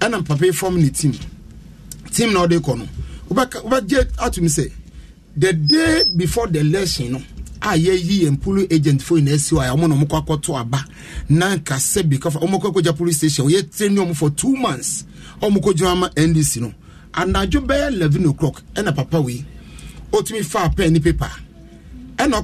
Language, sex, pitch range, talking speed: English, male, 150-210 Hz, 170 wpm